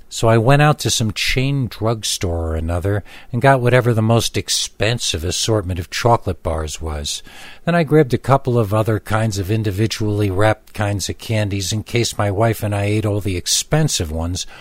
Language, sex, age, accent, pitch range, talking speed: English, male, 60-79, American, 90-125 Hz, 190 wpm